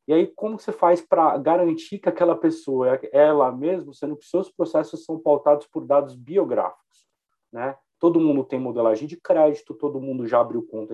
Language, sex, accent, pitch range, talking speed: Portuguese, male, Brazilian, 135-175 Hz, 185 wpm